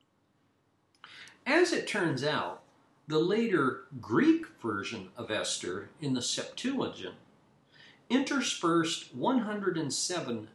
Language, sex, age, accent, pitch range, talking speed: English, male, 50-69, American, 120-195 Hz, 85 wpm